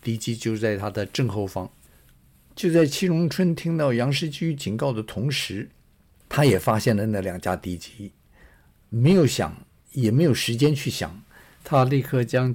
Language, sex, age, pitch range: Chinese, male, 50-69, 105-140 Hz